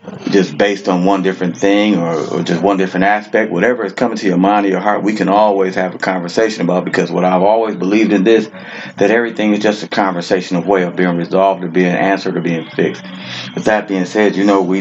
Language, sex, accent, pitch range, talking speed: English, male, American, 95-105 Hz, 240 wpm